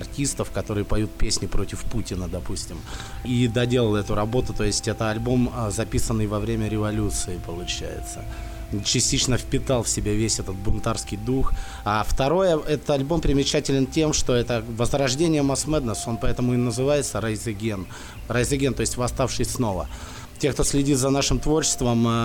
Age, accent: 20-39, native